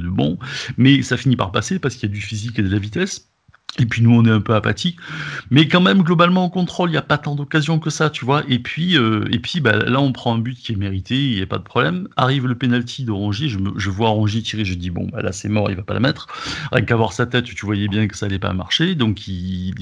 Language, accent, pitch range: French, French, 105-135 Hz